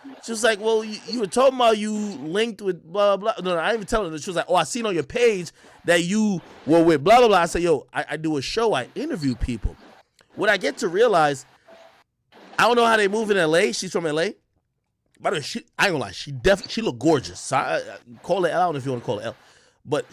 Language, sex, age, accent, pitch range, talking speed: English, male, 20-39, American, 135-195 Hz, 285 wpm